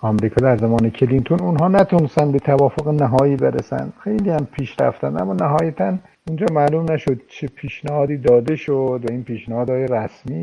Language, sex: Persian, male